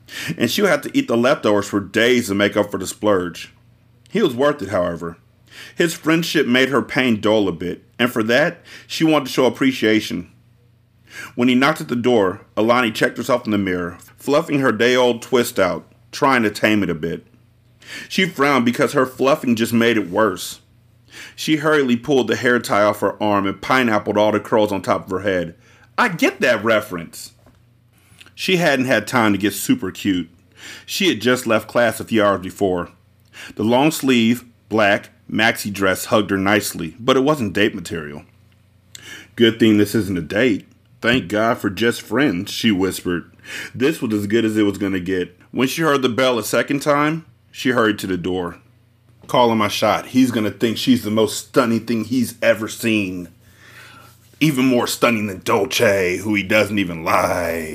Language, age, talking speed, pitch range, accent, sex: English, 40-59, 190 wpm, 105-125 Hz, American, male